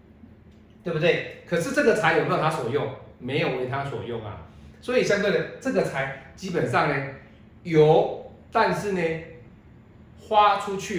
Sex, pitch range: male, 115-160 Hz